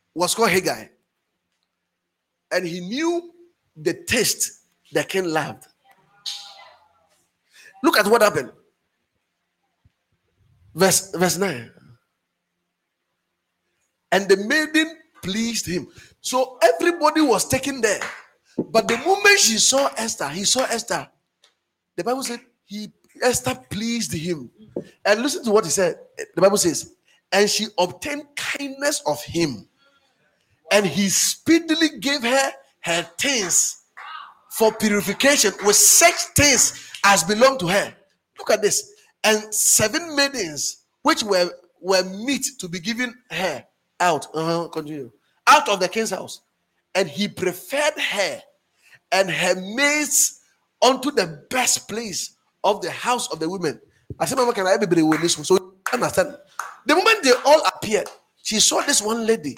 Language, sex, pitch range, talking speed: English, male, 180-280 Hz, 140 wpm